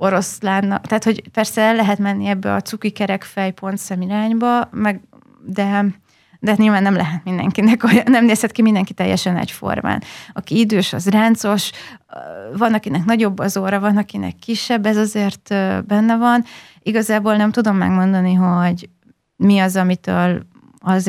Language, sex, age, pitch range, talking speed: Hungarian, female, 30-49, 180-205 Hz, 145 wpm